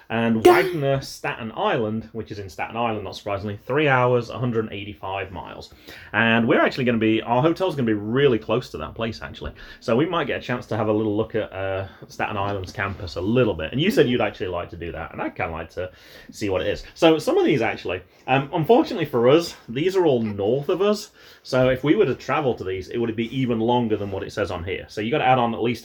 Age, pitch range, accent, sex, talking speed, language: 30-49, 105-145 Hz, British, male, 260 wpm, English